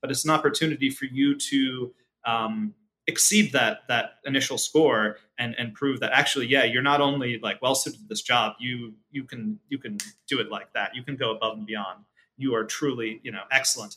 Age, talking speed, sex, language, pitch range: 30-49, 205 wpm, male, English, 115-150 Hz